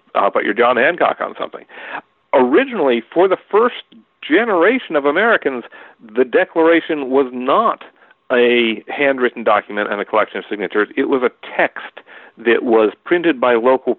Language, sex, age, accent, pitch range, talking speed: English, male, 50-69, American, 120-165 Hz, 150 wpm